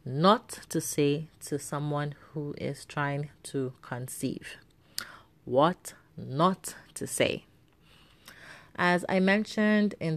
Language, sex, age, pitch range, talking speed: English, female, 30-49, 140-165 Hz, 105 wpm